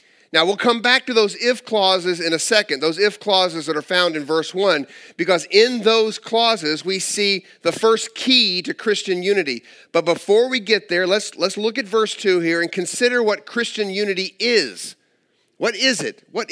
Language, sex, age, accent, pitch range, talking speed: English, male, 50-69, American, 180-235 Hz, 195 wpm